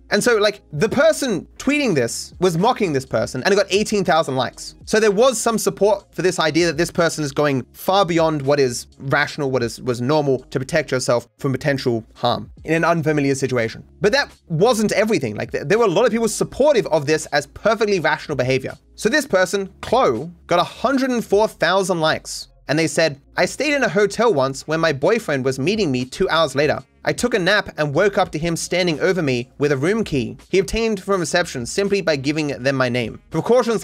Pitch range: 135-195 Hz